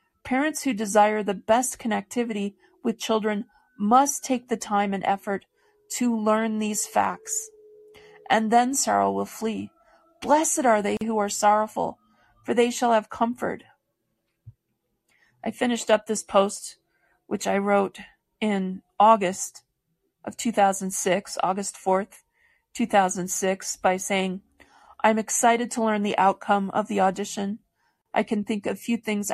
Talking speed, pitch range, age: 135 wpm, 195-235 Hz, 40-59